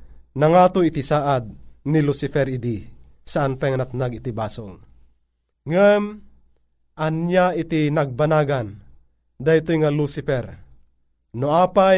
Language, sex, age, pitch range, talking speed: Filipino, male, 30-49, 110-180 Hz, 115 wpm